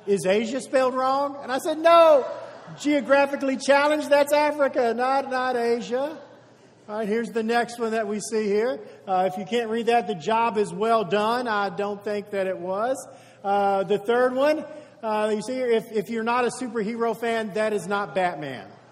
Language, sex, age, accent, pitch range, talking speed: English, male, 50-69, American, 200-260 Hz, 195 wpm